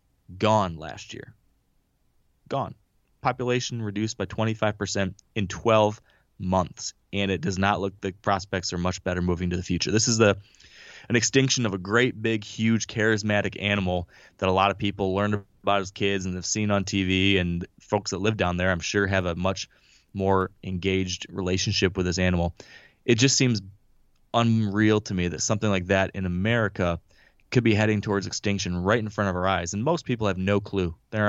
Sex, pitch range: male, 95-105 Hz